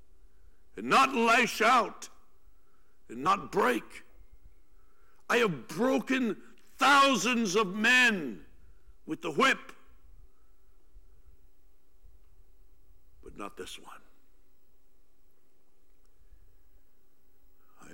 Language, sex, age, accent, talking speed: English, male, 60-79, American, 65 wpm